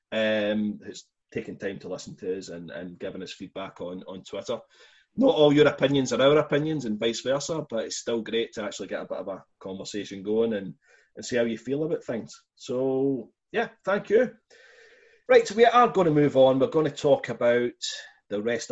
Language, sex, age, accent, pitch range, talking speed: English, male, 30-49, British, 105-140 Hz, 210 wpm